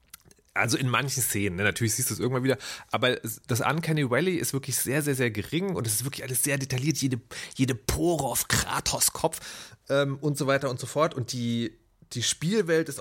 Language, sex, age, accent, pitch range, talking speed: German, male, 30-49, German, 110-140 Hz, 200 wpm